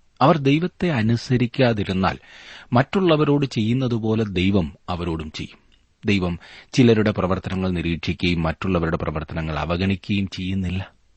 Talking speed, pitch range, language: 85 wpm, 85-115 Hz, Malayalam